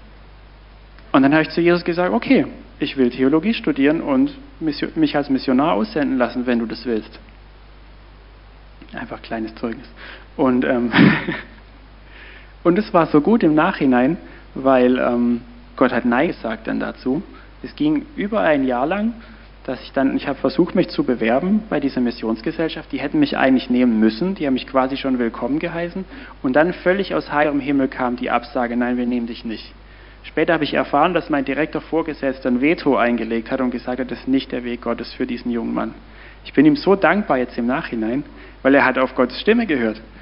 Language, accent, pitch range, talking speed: German, German, 125-180 Hz, 190 wpm